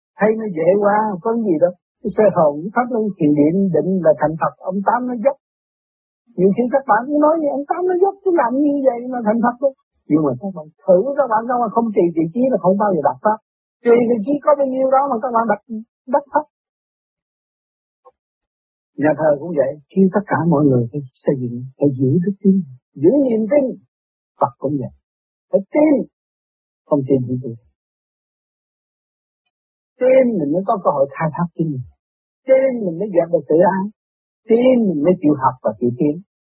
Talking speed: 200 wpm